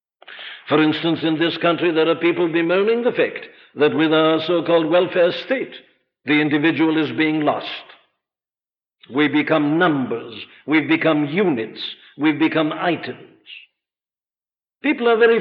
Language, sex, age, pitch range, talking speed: English, male, 60-79, 150-205 Hz, 130 wpm